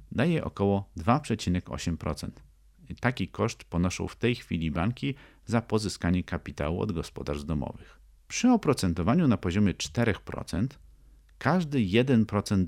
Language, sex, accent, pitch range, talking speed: Polish, male, native, 80-110 Hz, 110 wpm